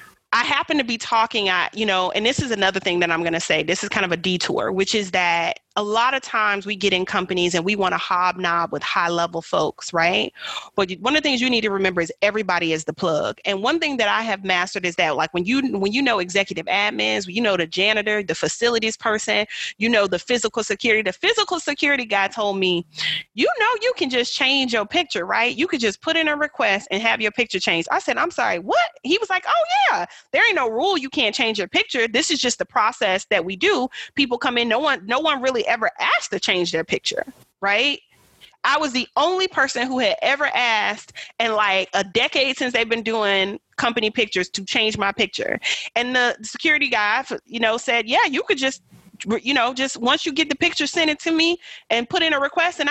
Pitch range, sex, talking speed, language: 195-280 Hz, female, 235 wpm, English